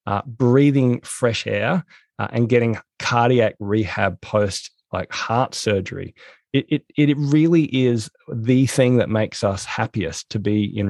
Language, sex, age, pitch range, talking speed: English, male, 20-39, 110-140 Hz, 150 wpm